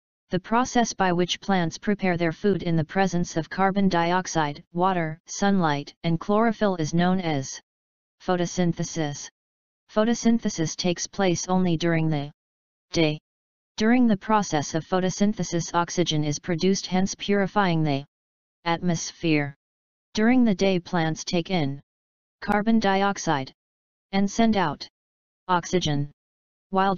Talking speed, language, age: 120 wpm, English, 30-49